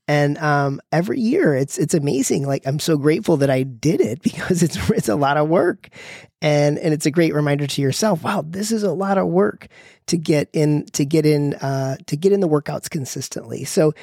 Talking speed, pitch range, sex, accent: 220 wpm, 140-165 Hz, male, American